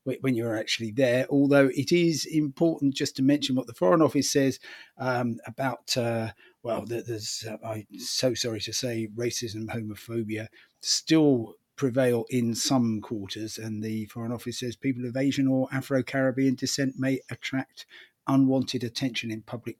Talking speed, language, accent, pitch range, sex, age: 155 wpm, English, British, 110-135 Hz, male, 30-49